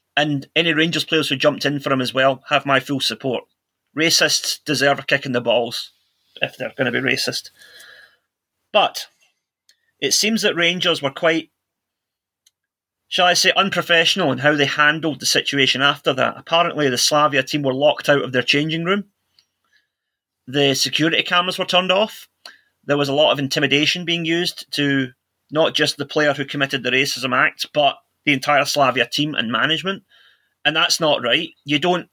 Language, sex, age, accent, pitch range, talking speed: English, male, 30-49, British, 140-170 Hz, 175 wpm